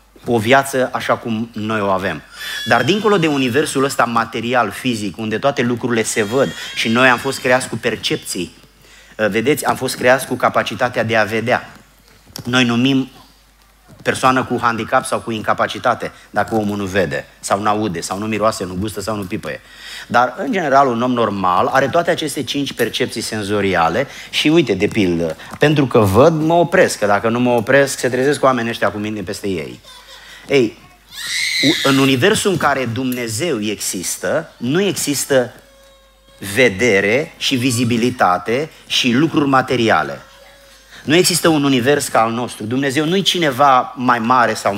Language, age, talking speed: Romanian, 30-49, 160 wpm